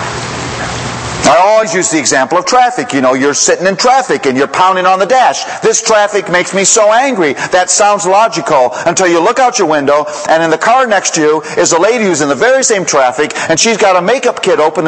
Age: 50-69